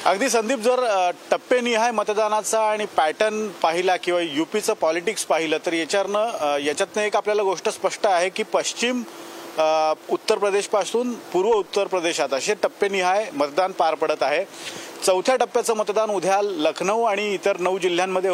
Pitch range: 180-220 Hz